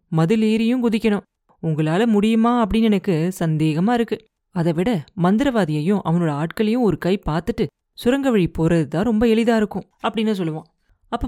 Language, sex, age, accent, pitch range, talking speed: Tamil, female, 30-49, native, 165-220 Hz, 130 wpm